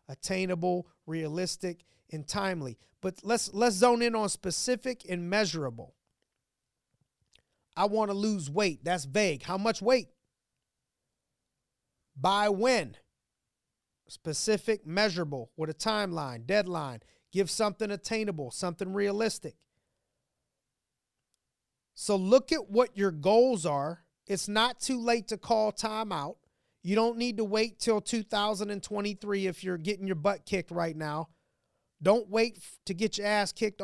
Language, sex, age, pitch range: English, male, 30-49, 175-220 Hz